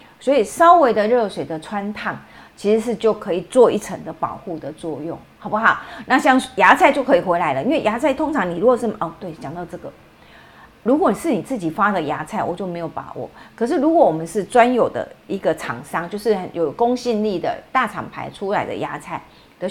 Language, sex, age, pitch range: Chinese, female, 40-59, 185-260 Hz